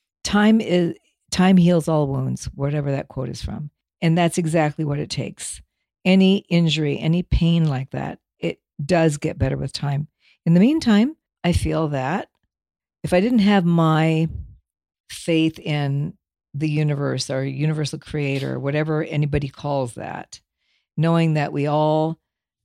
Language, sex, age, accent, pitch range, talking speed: English, female, 50-69, American, 140-170 Hz, 150 wpm